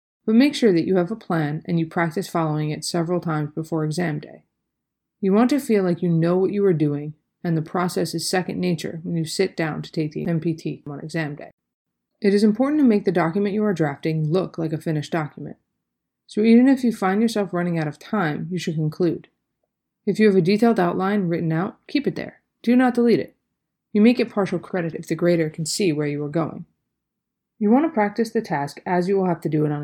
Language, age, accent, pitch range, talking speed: English, 30-49, American, 160-200 Hz, 235 wpm